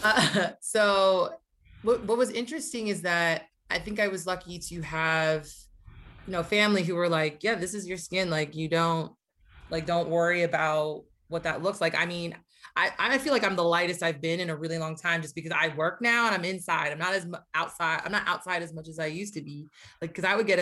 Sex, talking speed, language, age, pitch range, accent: female, 235 wpm, English, 20-39, 165-225 Hz, American